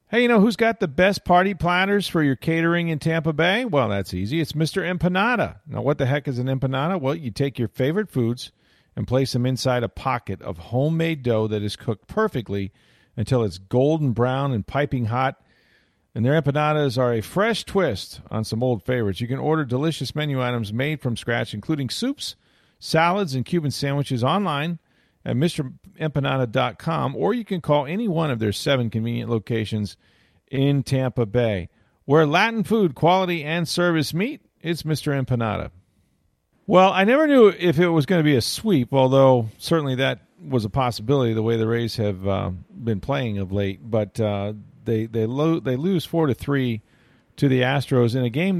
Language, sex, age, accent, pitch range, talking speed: English, male, 40-59, American, 115-160 Hz, 185 wpm